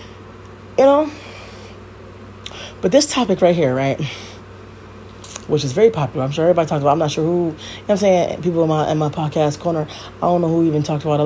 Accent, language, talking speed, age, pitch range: American, English, 220 wpm, 20-39, 105-165 Hz